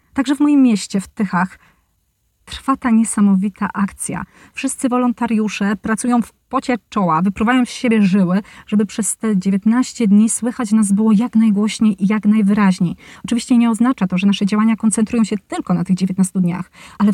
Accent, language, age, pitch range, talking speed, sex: native, Polish, 30-49, 210-265 Hz, 170 wpm, female